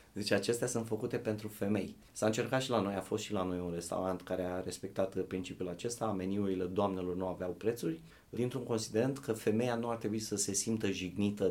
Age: 30-49